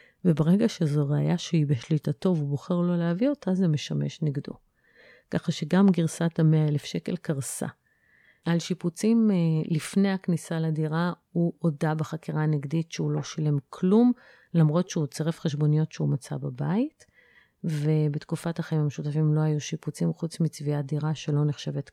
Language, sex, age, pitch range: Hebrew, female, 30-49, 155-190 Hz